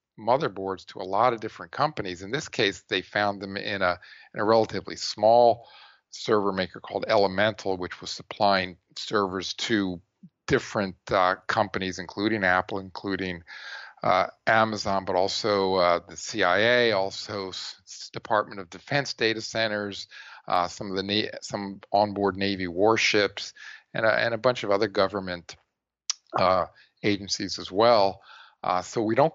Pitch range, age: 95-110 Hz, 50-69